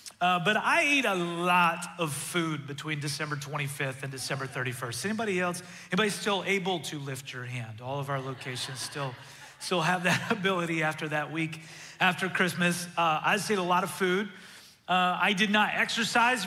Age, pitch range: 30-49, 165-200 Hz